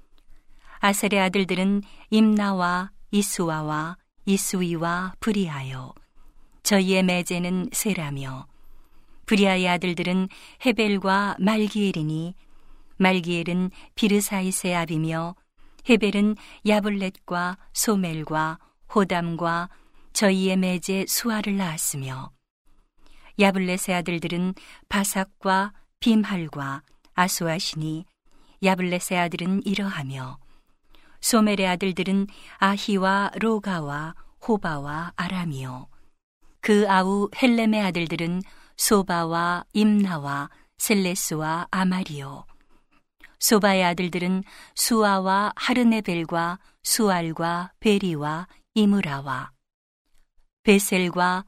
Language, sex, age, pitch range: Korean, female, 50-69, 170-205 Hz